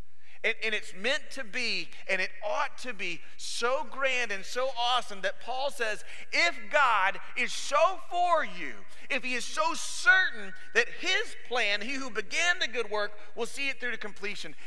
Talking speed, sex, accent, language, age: 180 wpm, male, American, English, 40-59